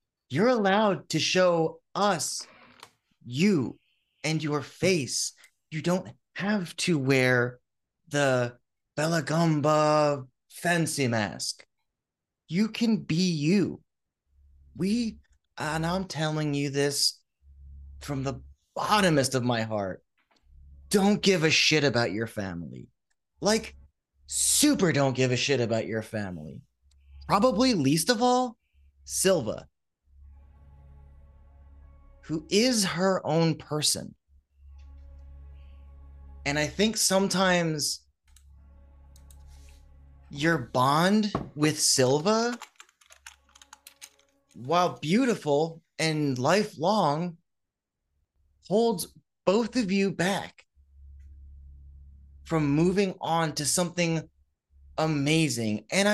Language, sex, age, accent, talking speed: English, male, 30-49, American, 90 wpm